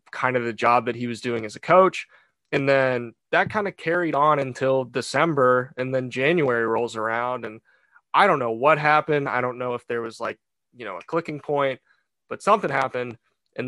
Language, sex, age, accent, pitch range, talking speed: English, male, 20-39, American, 120-150 Hz, 205 wpm